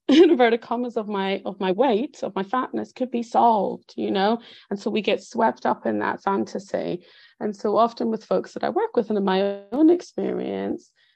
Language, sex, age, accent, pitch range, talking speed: English, female, 30-49, British, 185-235 Hz, 205 wpm